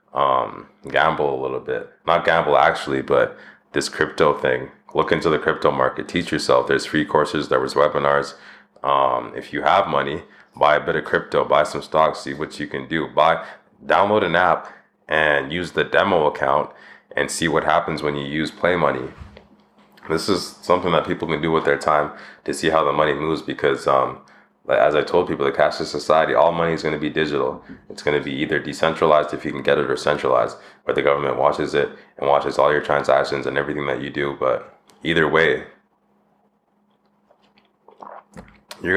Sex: male